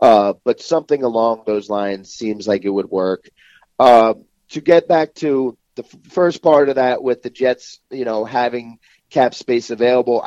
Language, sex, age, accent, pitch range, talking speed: English, male, 40-59, American, 110-130 Hz, 175 wpm